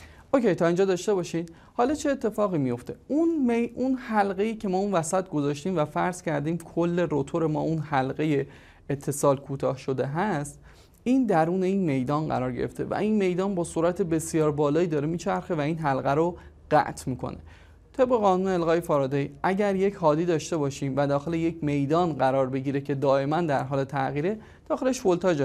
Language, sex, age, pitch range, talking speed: Persian, male, 30-49, 140-190 Hz, 175 wpm